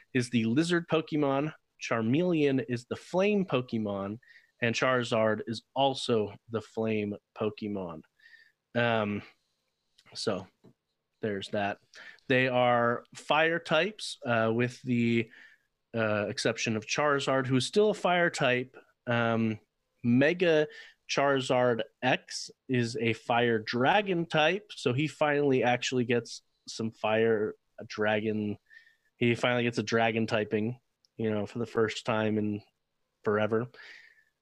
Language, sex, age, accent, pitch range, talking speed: English, male, 30-49, American, 110-135 Hz, 120 wpm